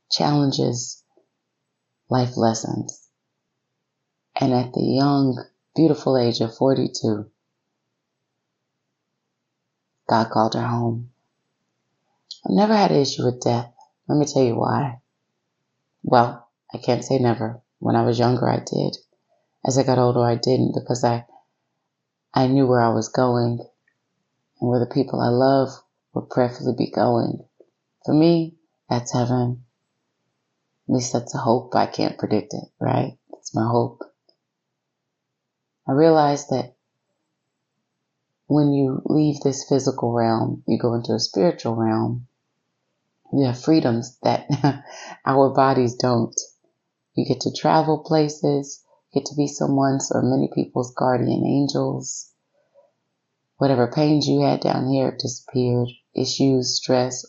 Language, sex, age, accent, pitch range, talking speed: English, female, 30-49, American, 120-140 Hz, 130 wpm